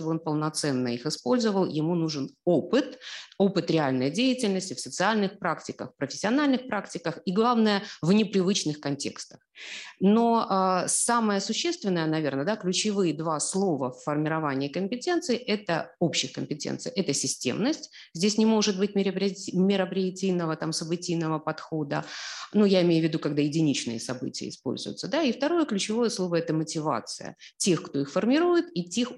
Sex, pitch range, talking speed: female, 145-200 Hz, 145 wpm